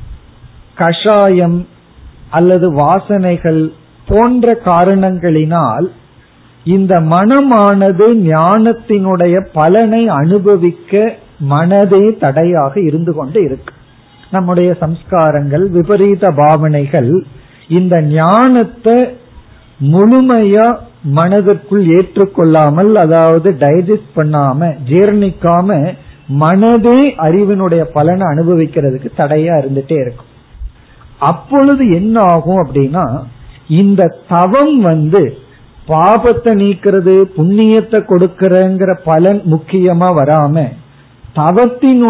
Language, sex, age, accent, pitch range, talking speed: Tamil, male, 50-69, native, 155-205 Hz, 70 wpm